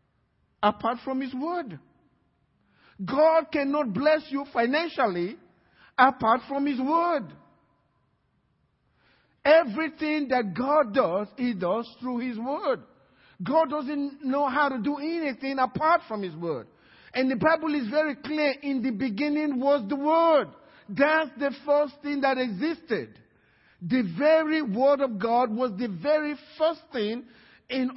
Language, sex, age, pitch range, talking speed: English, male, 50-69, 245-305 Hz, 135 wpm